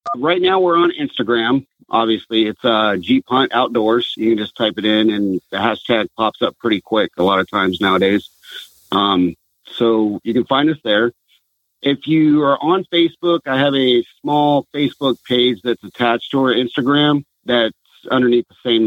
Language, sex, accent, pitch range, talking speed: English, male, American, 110-140 Hz, 180 wpm